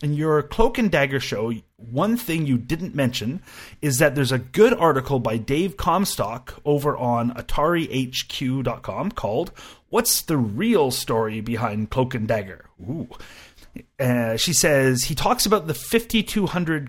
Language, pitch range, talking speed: English, 120-160 Hz, 140 wpm